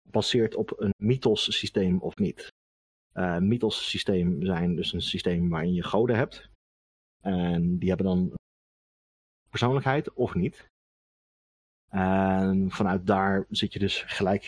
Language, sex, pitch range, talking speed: Dutch, male, 80-100 Hz, 135 wpm